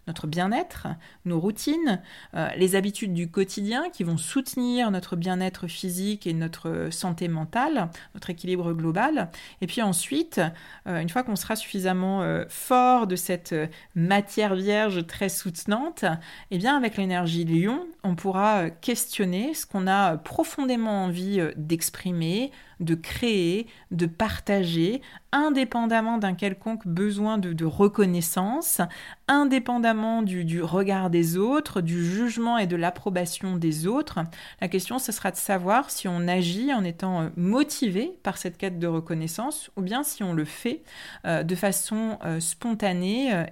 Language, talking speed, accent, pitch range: French, 145 wpm, French, 175-225 Hz